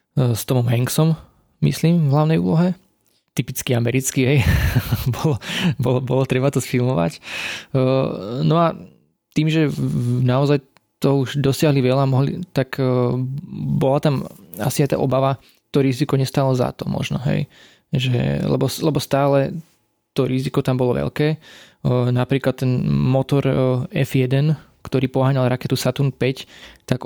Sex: male